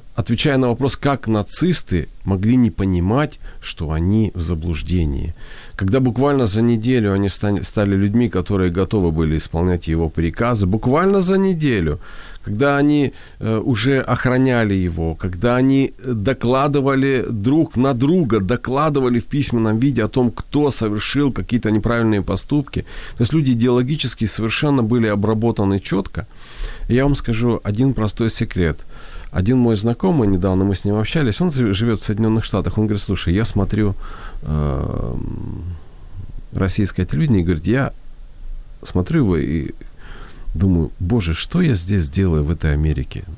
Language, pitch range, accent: Ukrainian, 90-130 Hz, native